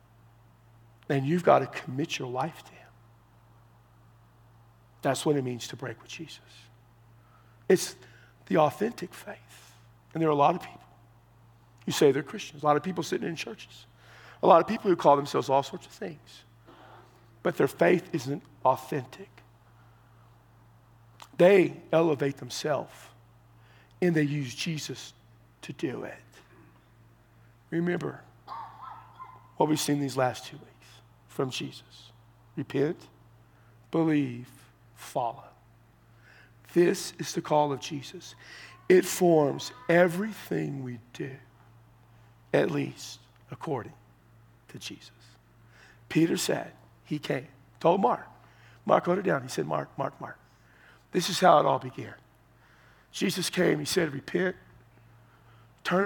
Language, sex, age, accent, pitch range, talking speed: English, male, 50-69, American, 115-150 Hz, 130 wpm